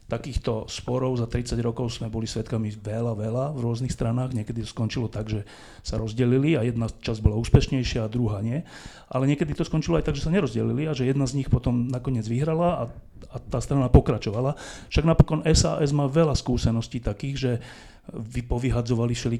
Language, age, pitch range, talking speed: Slovak, 40-59, 115-130 Hz, 180 wpm